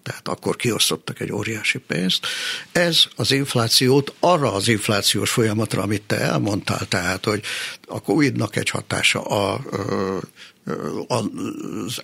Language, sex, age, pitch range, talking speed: Hungarian, male, 60-79, 100-145 Hz, 115 wpm